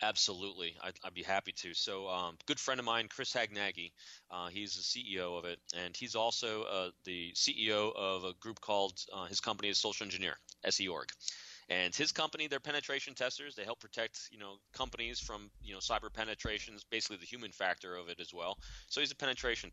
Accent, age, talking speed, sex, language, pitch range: American, 30-49, 200 wpm, male, English, 95-115 Hz